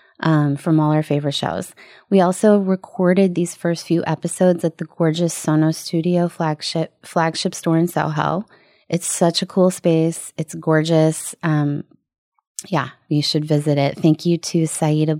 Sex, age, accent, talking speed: female, 20-39, American, 160 wpm